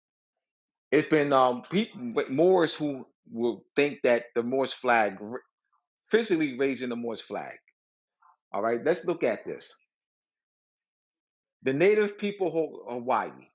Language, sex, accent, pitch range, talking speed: English, male, American, 115-150 Hz, 125 wpm